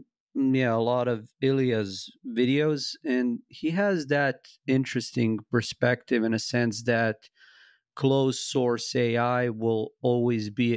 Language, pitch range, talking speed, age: English, 115-130 Hz, 125 wpm, 40-59